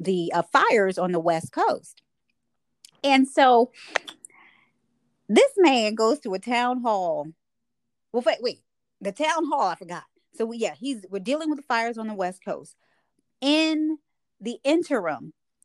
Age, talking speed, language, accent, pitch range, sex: 30-49, 155 wpm, English, American, 175-250 Hz, female